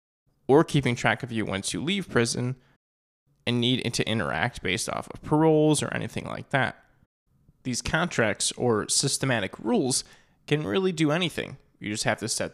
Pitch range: 115-150 Hz